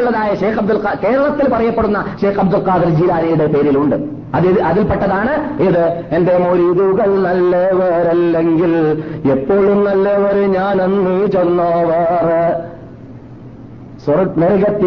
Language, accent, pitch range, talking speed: Malayalam, native, 140-185 Hz, 80 wpm